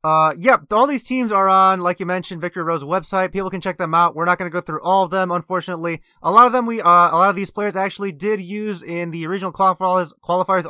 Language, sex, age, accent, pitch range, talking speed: English, male, 20-39, American, 165-195 Hz, 260 wpm